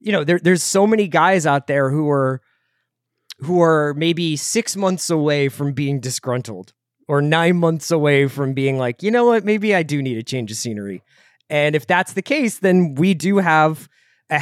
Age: 30-49